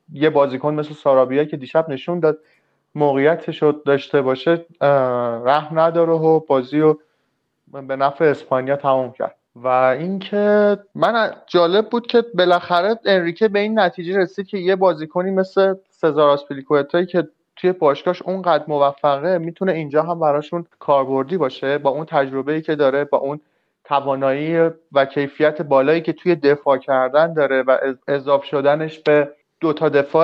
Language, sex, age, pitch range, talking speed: Persian, male, 30-49, 140-165 Hz, 135 wpm